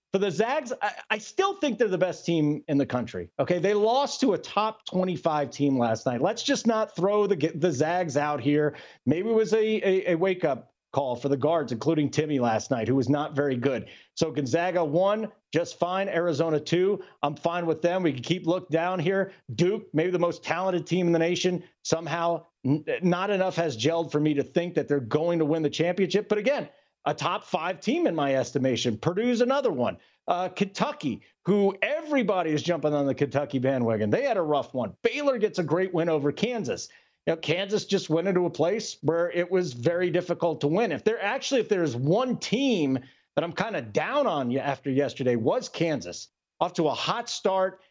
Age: 40-59